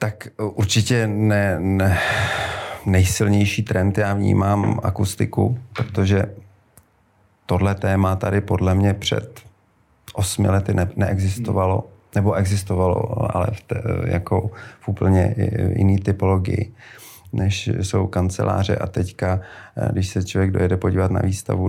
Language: Czech